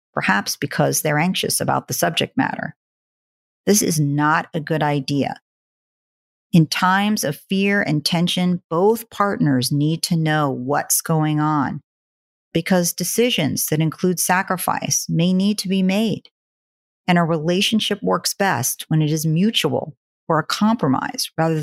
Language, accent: English, American